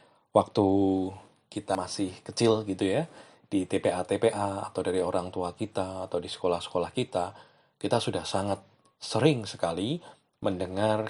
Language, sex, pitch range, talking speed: Indonesian, male, 90-110 Hz, 125 wpm